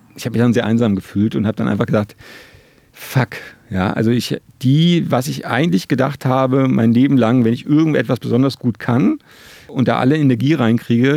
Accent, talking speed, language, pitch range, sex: German, 195 wpm, German, 110-135 Hz, male